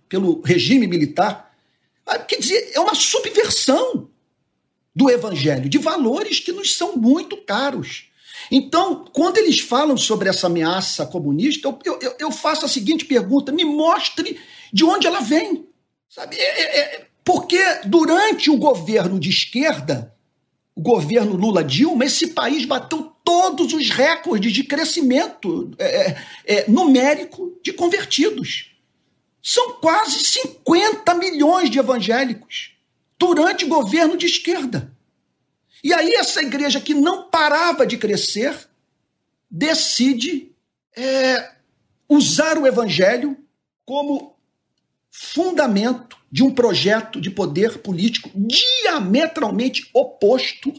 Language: Portuguese